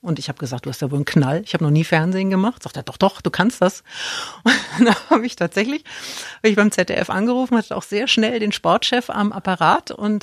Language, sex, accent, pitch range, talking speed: German, female, German, 175-235 Hz, 245 wpm